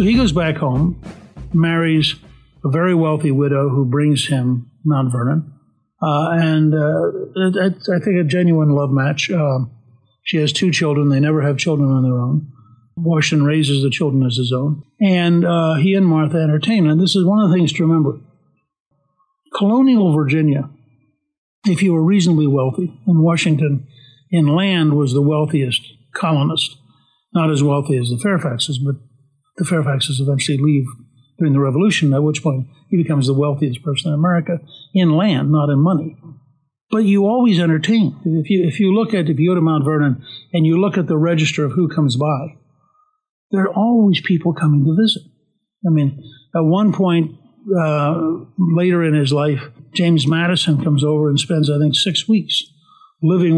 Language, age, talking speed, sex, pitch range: English, 60-79, 170 wpm, male, 145-175 Hz